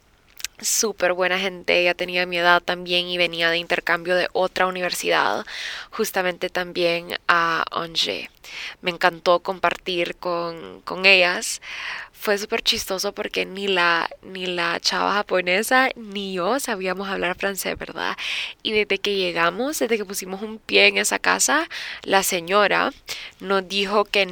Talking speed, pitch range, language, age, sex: 145 wpm, 175-200 Hz, Spanish, 10-29, female